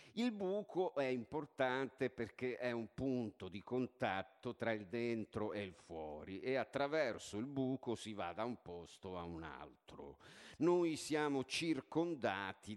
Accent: native